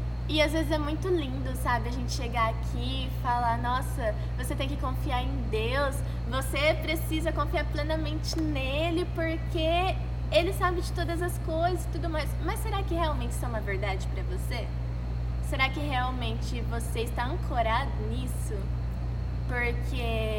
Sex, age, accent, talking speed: female, 10-29, Brazilian, 155 wpm